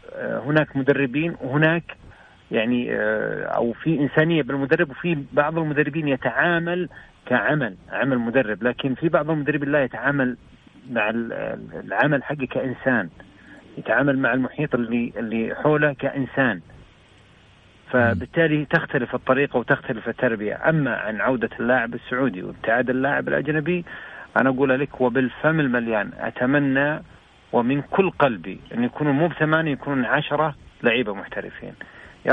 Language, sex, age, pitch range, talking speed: Arabic, male, 40-59, 120-150 Hz, 115 wpm